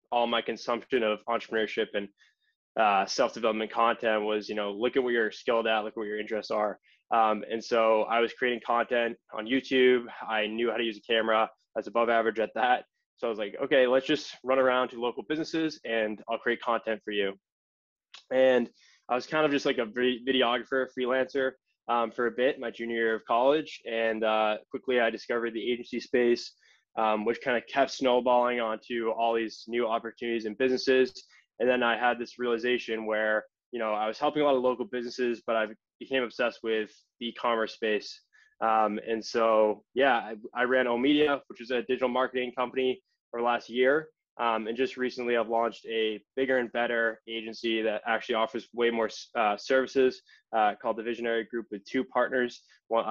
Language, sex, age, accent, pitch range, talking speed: English, male, 10-29, American, 110-125 Hz, 195 wpm